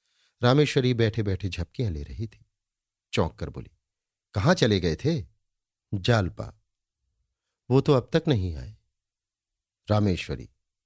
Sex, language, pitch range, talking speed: male, Hindi, 95-125 Hz, 120 wpm